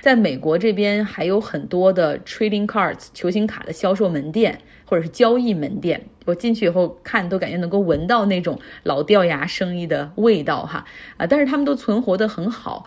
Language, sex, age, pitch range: Chinese, female, 30-49, 170-210 Hz